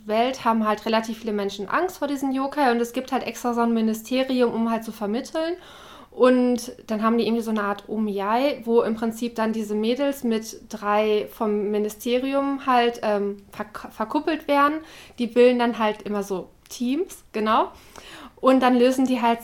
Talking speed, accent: 180 wpm, German